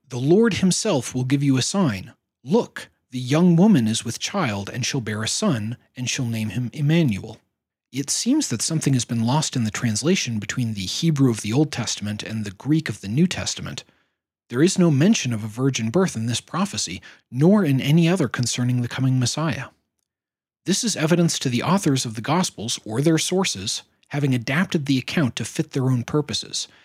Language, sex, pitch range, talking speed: English, male, 115-155 Hz, 200 wpm